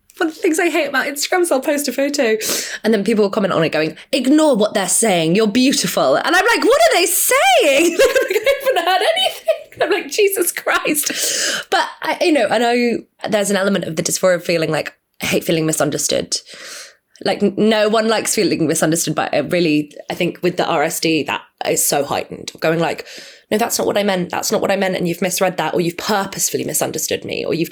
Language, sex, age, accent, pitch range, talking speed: English, female, 20-39, British, 160-250 Hz, 225 wpm